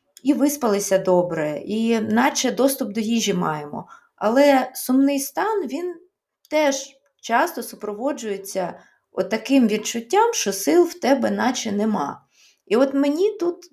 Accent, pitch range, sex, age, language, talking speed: native, 205-280 Hz, female, 20-39, Ukrainian, 125 wpm